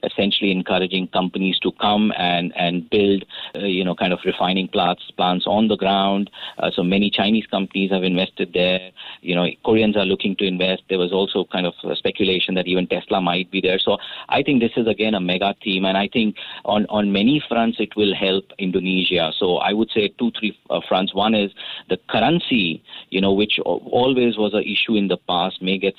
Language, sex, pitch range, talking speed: English, male, 90-105 Hz, 205 wpm